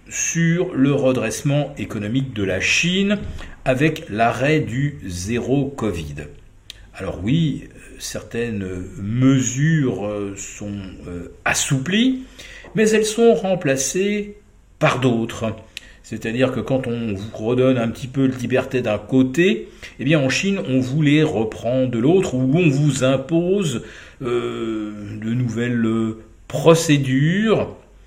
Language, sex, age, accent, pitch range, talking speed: French, male, 50-69, French, 105-145 Hz, 120 wpm